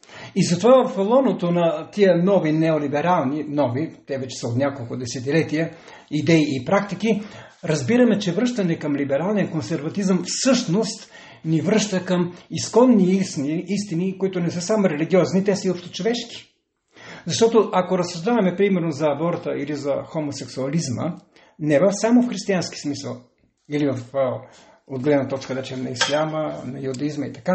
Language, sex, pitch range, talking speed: Bulgarian, male, 140-195 Hz, 140 wpm